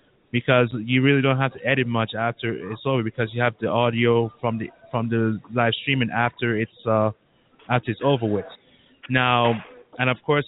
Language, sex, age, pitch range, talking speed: English, male, 20-39, 115-140 Hz, 190 wpm